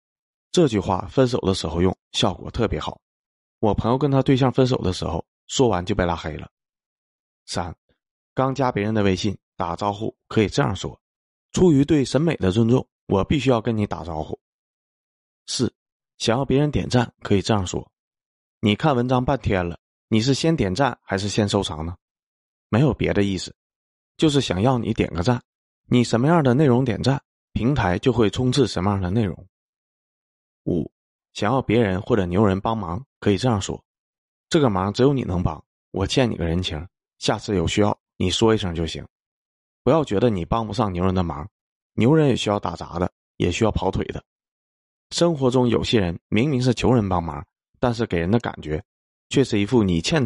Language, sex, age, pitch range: Chinese, male, 20-39, 90-125 Hz